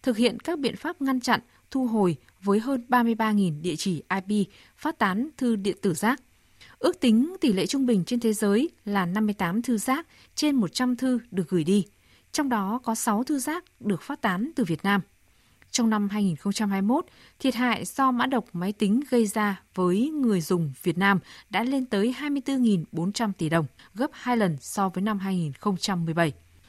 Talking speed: 185 wpm